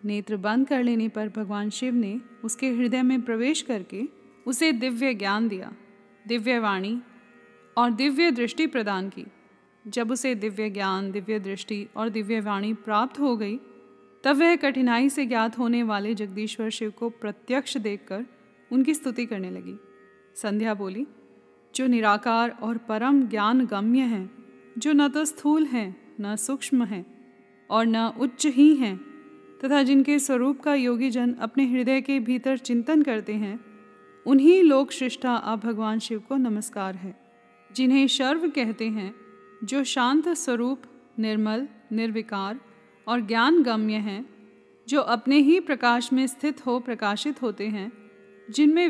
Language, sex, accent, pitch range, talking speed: Hindi, female, native, 210-265 Hz, 145 wpm